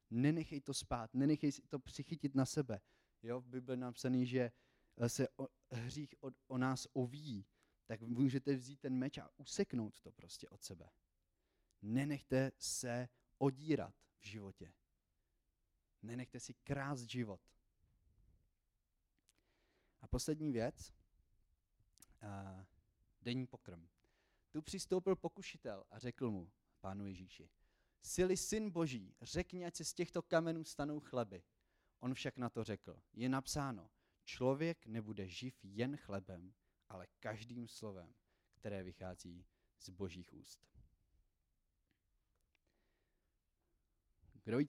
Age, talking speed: 30-49, 115 wpm